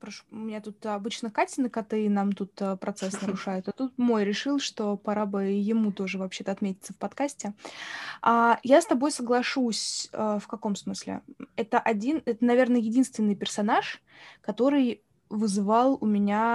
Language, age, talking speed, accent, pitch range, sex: Russian, 20-39, 160 wpm, native, 205-260 Hz, female